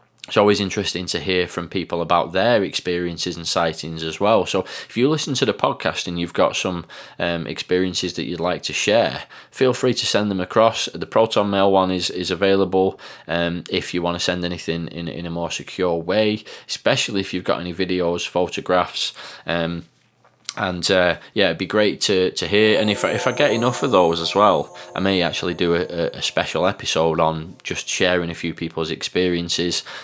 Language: English